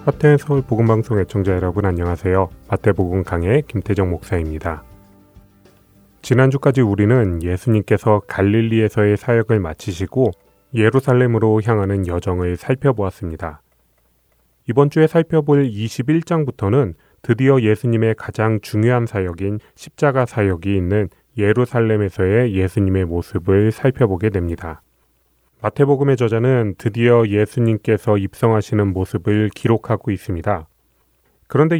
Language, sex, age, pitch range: Korean, male, 30-49, 95-125 Hz